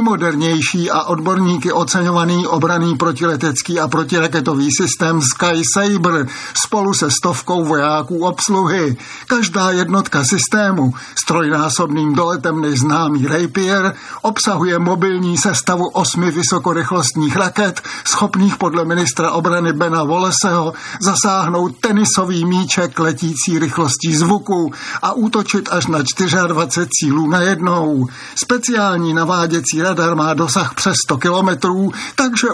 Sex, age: male, 50-69